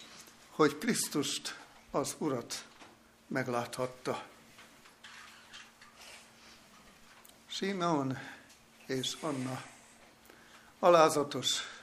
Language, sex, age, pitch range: Hungarian, male, 60-79, 130-165 Hz